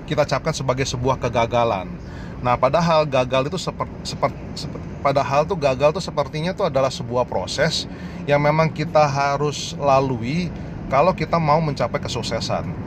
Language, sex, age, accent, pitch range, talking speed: Indonesian, male, 30-49, native, 125-155 Hz, 145 wpm